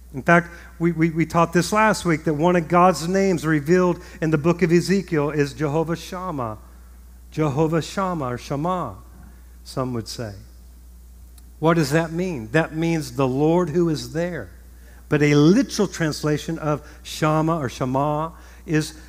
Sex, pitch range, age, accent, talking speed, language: male, 130-175 Hz, 50-69, American, 155 wpm, English